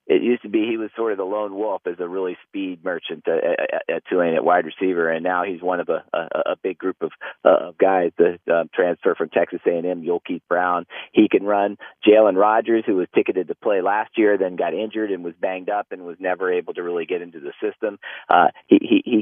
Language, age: English, 40-59